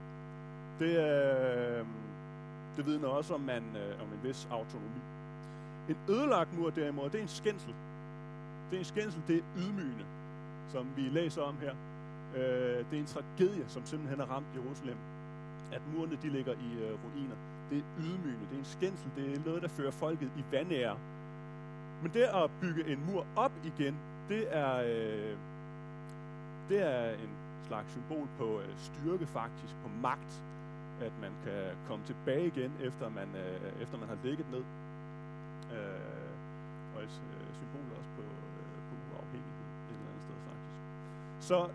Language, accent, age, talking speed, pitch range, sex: Danish, native, 30-49, 170 wpm, 140-155 Hz, male